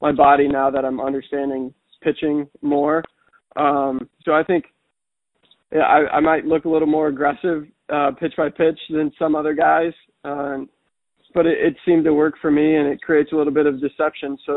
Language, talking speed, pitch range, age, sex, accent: English, 190 wpm, 140-155 Hz, 20-39, male, American